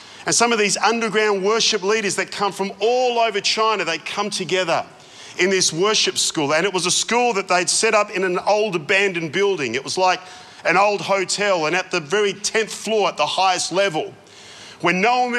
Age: 40-59